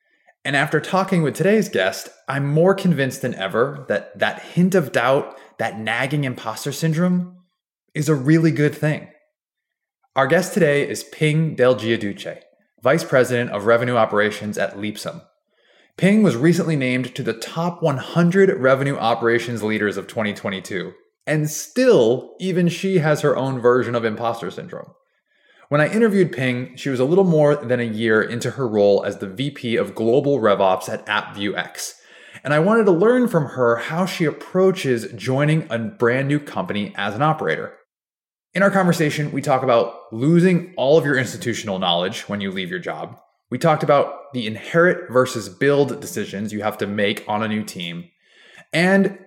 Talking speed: 170 wpm